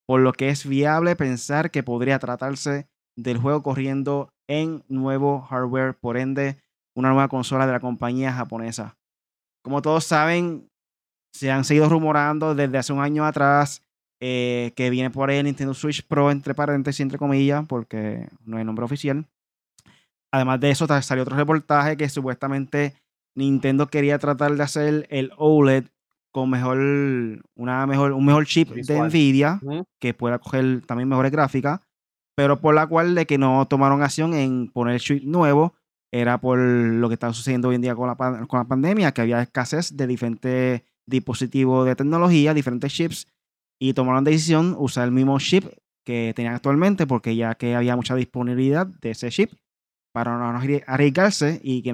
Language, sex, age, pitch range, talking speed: Spanish, male, 20-39, 125-145 Hz, 170 wpm